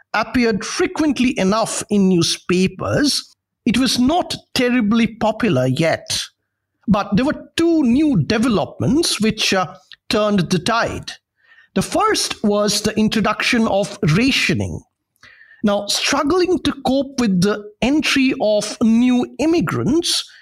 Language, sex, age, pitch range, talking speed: English, male, 50-69, 195-250 Hz, 115 wpm